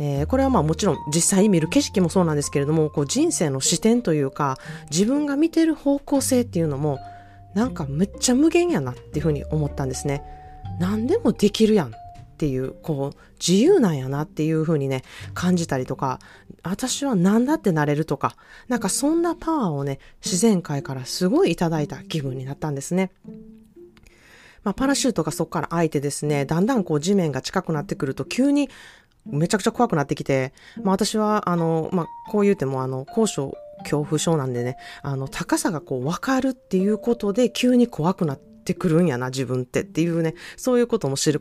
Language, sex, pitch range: Japanese, female, 145-215 Hz